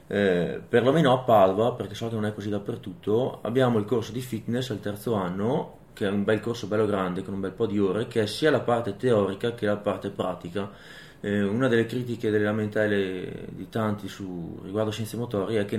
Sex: male